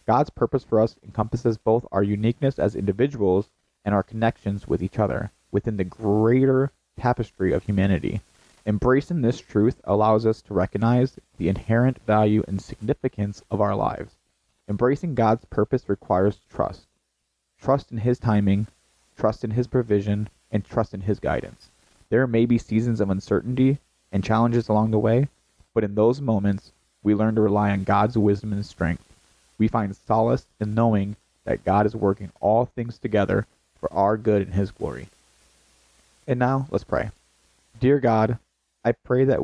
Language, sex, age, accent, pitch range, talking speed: English, male, 30-49, American, 100-115 Hz, 160 wpm